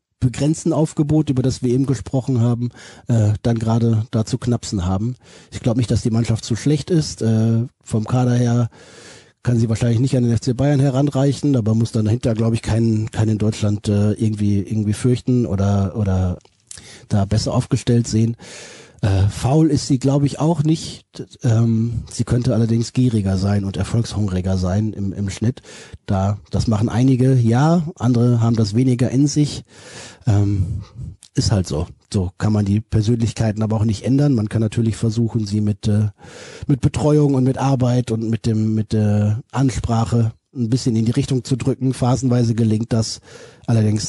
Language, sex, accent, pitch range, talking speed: German, male, German, 105-125 Hz, 175 wpm